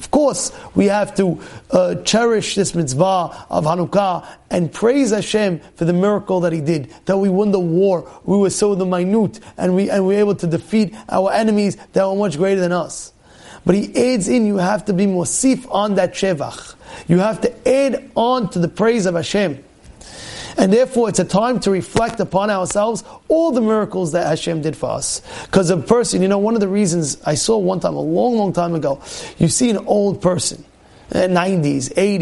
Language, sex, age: English, male, 30-49